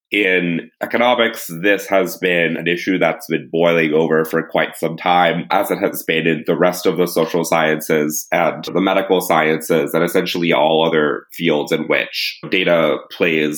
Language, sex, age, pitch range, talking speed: English, male, 30-49, 80-95 Hz, 170 wpm